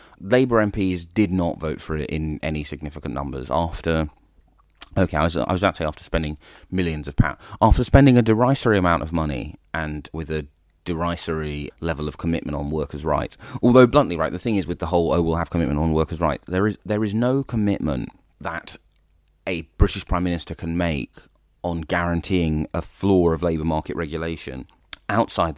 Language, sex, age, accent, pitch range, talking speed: English, male, 30-49, British, 75-95 Hz, 185 wpm